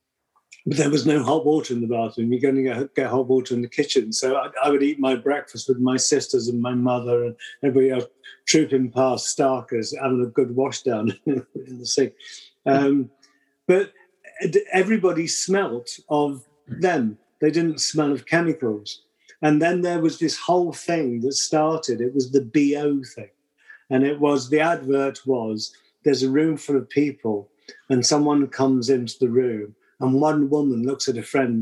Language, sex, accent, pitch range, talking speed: English, male, British, 130-150 Hz, 180 wpm